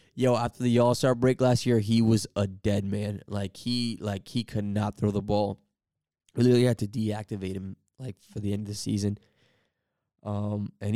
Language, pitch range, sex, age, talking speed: English, 105-145 Hz, male, 10-29, 205 wpm